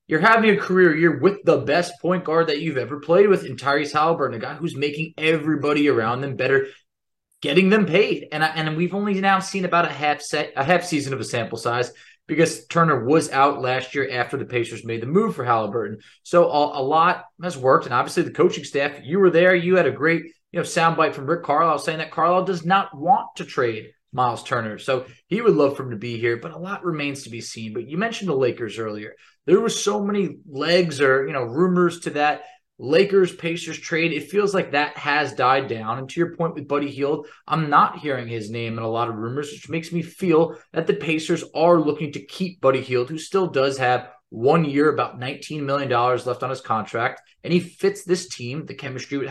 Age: 20-39